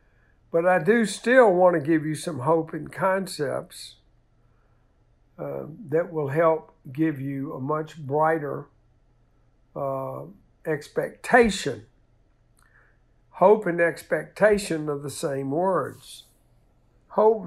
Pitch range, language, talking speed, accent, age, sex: 130-160 Hz, English, 105 wpm, American, 60-79, male